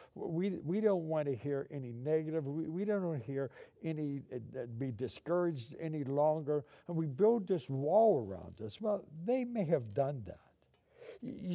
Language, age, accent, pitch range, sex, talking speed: English, 60-79, American, 125-170 Hz, male, 175 wpm